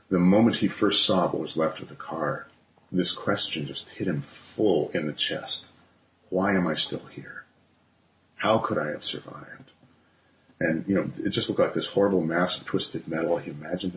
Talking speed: 195 wpm